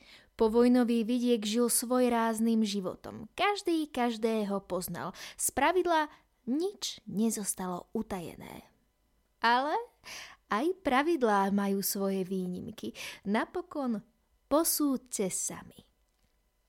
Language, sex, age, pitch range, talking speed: Slovak, female, 20-39, 195-250 Hz, 85 wpm